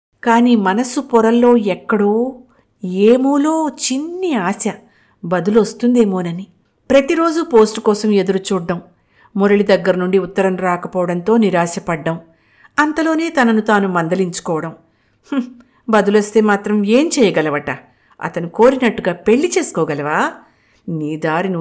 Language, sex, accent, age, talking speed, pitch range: Telugu, female, native, 50-69, 90 wpm, 175-235 Hz